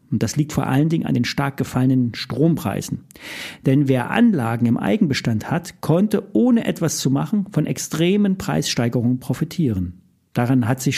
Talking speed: 160 wpm